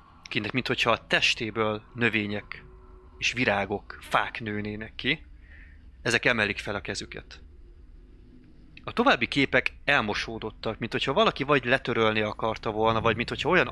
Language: Hungarian